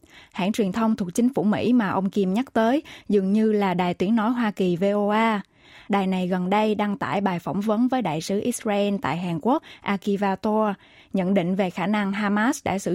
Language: Vietnamese